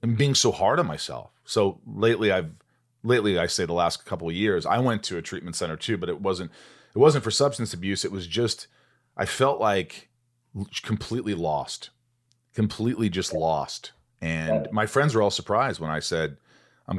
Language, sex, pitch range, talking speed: English, male, 85-120 Hz, 185 wpm